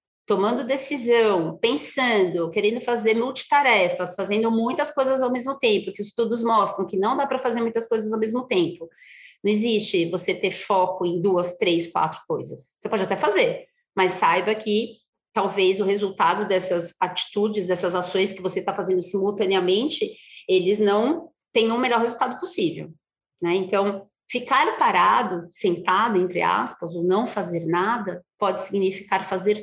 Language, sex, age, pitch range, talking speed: Portuguese, female, 30-49, 180-225 Hz, 155 wpm